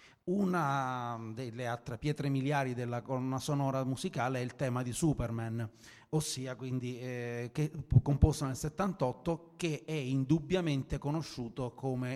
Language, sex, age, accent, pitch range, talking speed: Italian, male, 30-49, native, 120-150 Hz, 130 wpm